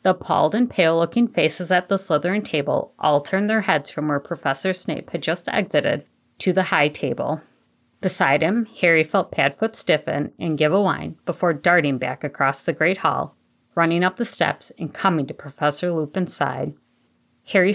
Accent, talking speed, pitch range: American, 175 wpm, 150-190 Hz